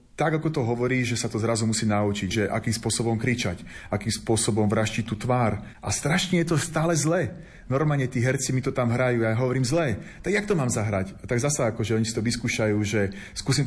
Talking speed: 225 wpm